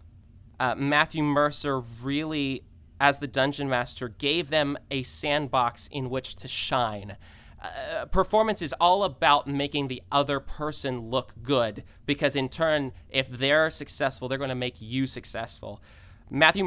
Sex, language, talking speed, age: male, English, 145 wpm, 20-39